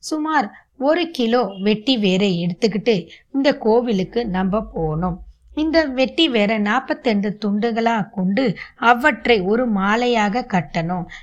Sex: female